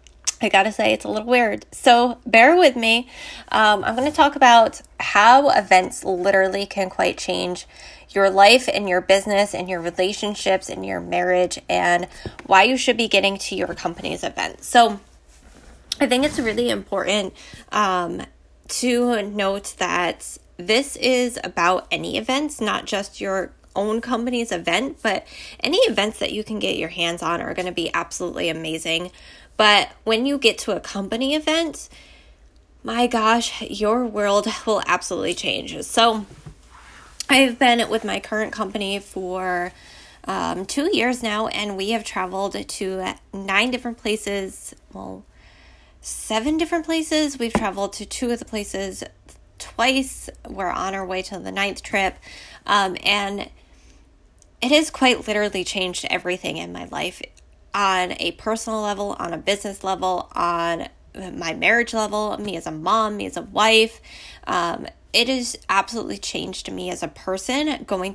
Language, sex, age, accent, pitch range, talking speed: English, female, 10-29, American, 185-235 Hz, 155 wpm